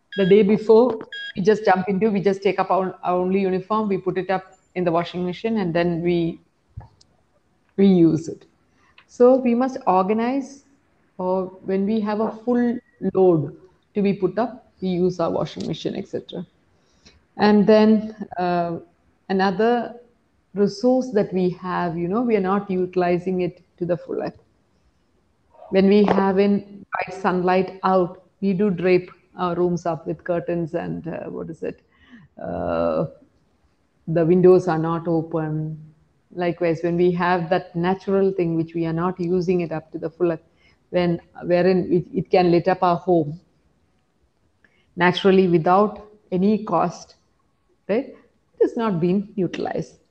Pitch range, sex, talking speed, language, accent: 175-205 Hz, female, 155 wpm, English, Indian